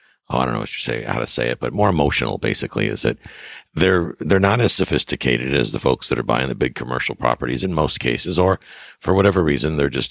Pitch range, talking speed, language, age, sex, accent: 65-85 Hz, 240 wpm, English, 60-79, male, American